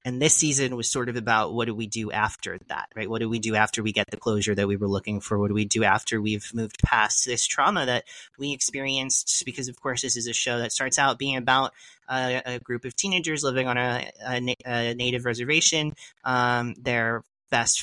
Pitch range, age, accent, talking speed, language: 115-140 Hz, 30-49, American, 230 wpm, English